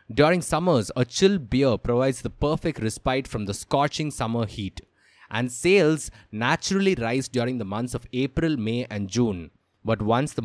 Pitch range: 110-150 Hz